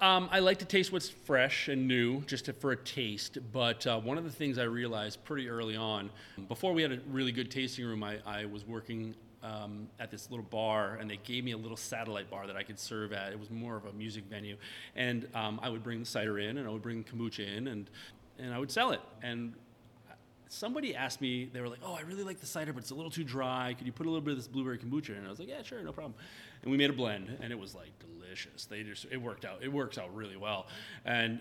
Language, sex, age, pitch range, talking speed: English, male, 30-49, 110-130 Hz, 270 wpm